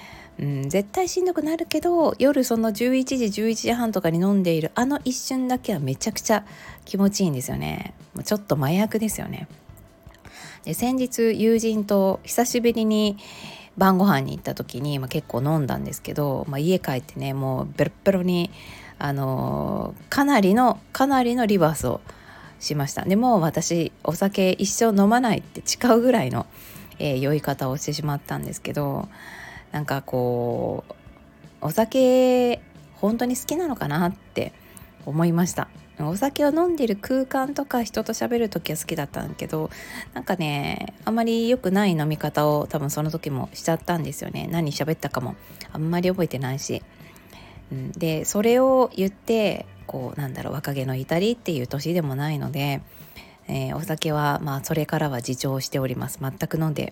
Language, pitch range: Japanese, 145-230 Hz